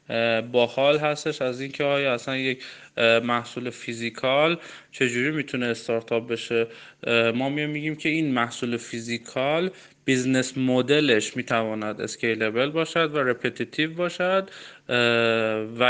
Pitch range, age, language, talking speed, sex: 115-140 Hz, 20-39, Persian, 105 wpm, male